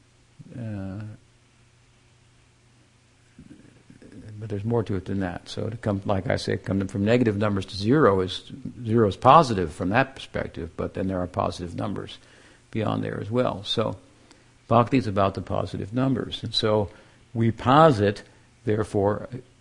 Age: 60-79